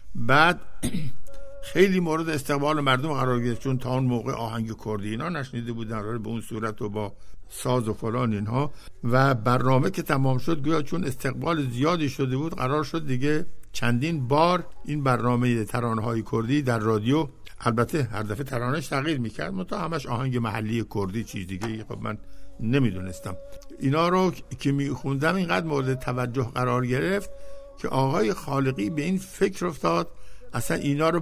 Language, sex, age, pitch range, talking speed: Persian, male, 60-79, 115-150 Hz, 160 wpm